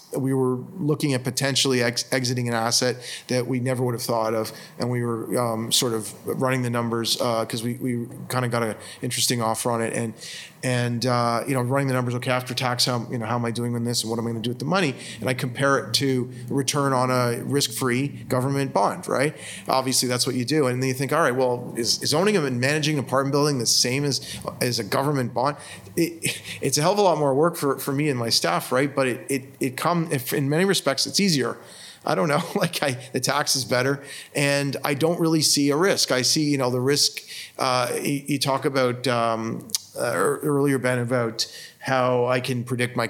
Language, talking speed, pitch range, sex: English, 230 wpm, 120-140 Hz, male